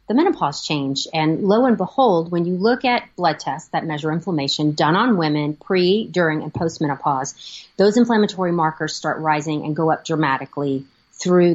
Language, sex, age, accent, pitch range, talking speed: English, female, 30-49, American, 155-215 Hz, 175 wpm